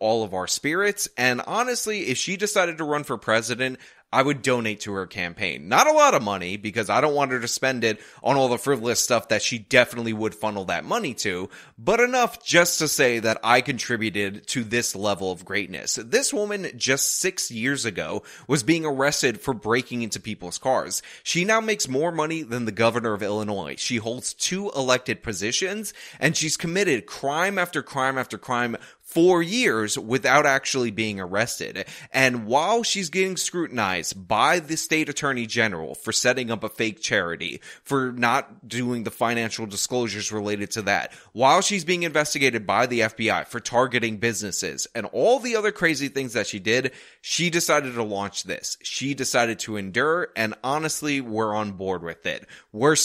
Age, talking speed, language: 20-39, 185 wpm, English